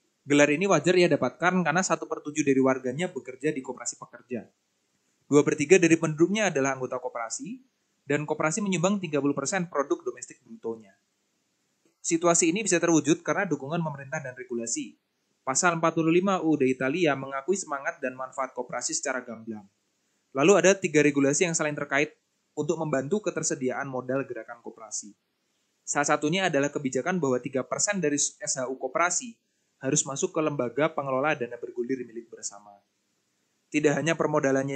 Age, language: 20-39, Indonesian